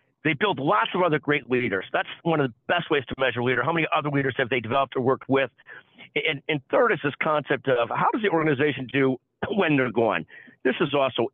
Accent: American